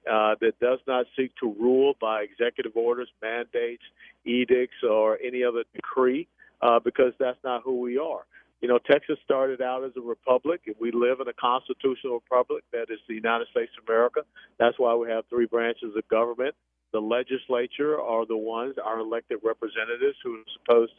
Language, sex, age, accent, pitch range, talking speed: English, male, 50-69, American, 120-150 Hz, 180 wpm